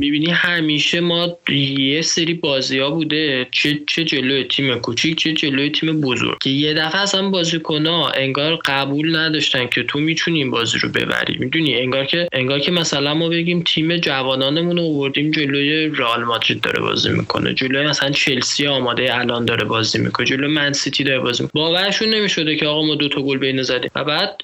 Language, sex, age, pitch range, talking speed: Persian, male, 20-39, 130-165 Hz, 175 wpm